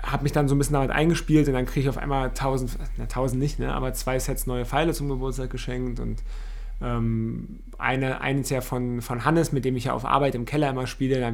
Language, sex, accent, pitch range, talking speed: German, male, German, 125-140 Hz, 250 wpm